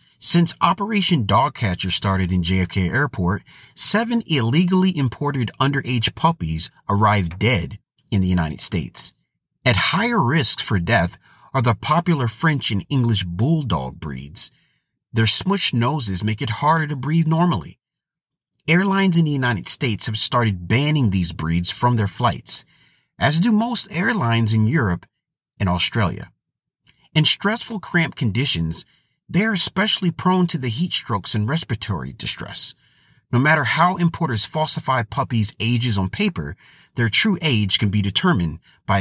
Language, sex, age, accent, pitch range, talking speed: English, male, 40-59, American, 105-160 Hz, 145 wpm